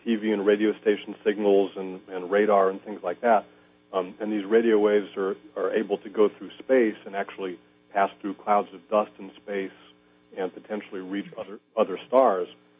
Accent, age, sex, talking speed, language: American, 40-59, male, 185 wpm, English